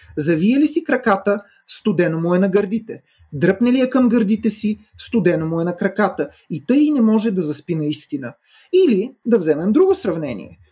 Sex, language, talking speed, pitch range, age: male, Bulgarian, 180 wpm, 170-220 Hz, 30-49